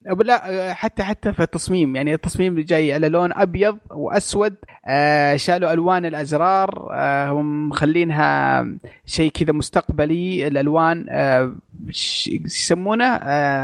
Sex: male